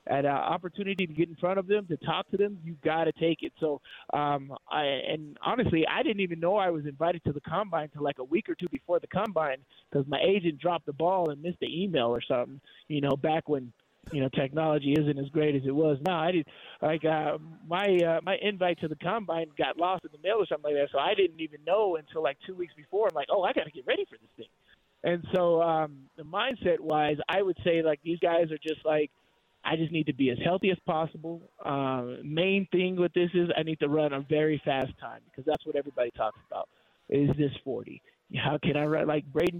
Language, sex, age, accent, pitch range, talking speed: English, male, 20-39, American, 145-175 Hz, 245 wpm